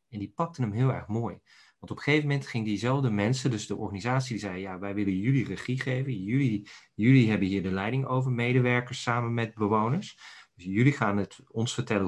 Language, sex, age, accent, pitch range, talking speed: Dutch, male, 40-59, Dutch, 105-130 Hz, 210 wpm